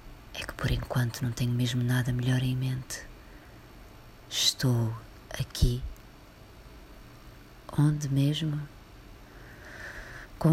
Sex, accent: female, Brazilian